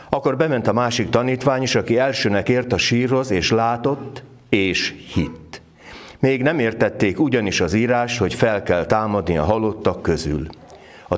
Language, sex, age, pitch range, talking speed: Hungarian, male, 60-79, 100-125 Hz, 155 wpm